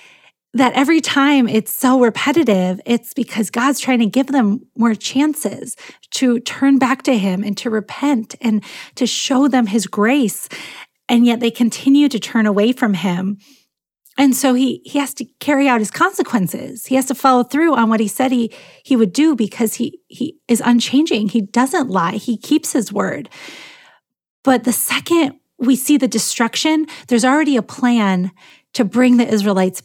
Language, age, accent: English, 30-49, American